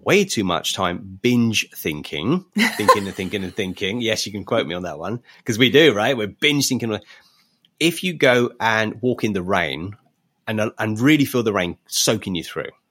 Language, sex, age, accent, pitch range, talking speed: English, male, 30-49, British, 95-130 Hz, 200 wpm